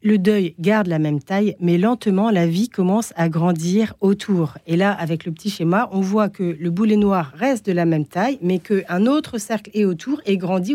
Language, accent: French, French